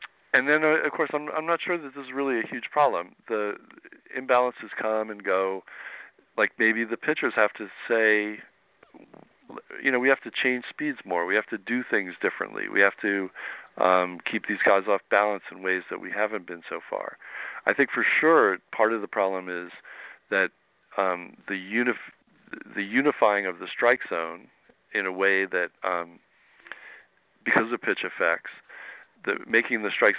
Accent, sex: American, male